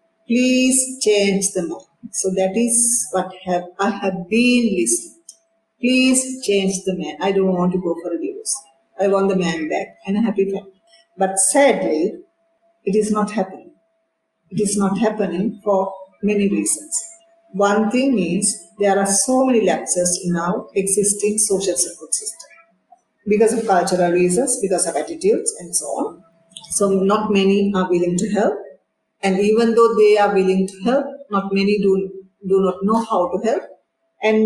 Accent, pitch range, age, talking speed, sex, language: Indian, 185-235 Hz, 50-69, 165 wpm, female, English